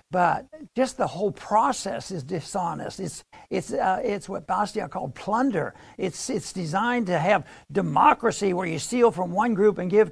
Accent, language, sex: American, English, male